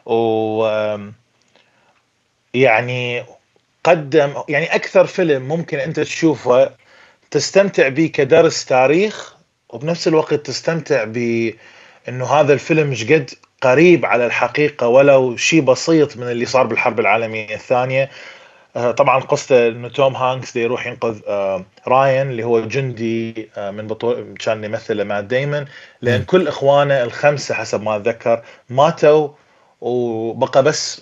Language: Arabic